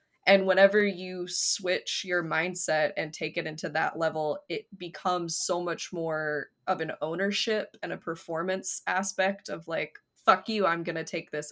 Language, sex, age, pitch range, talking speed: English, female, 20-39, 160-190 Hz, 170 wpm